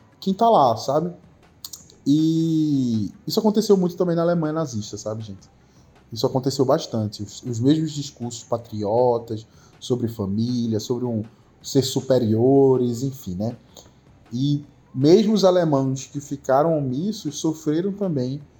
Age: 20-39